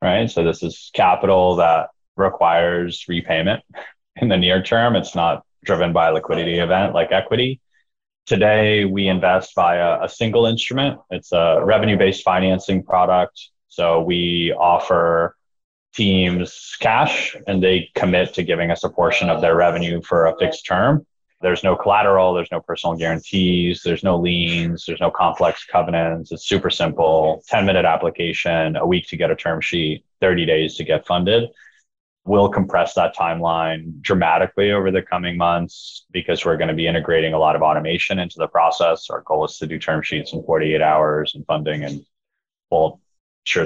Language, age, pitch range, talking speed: English, 20-39, 80-95 Hz, 165 wpm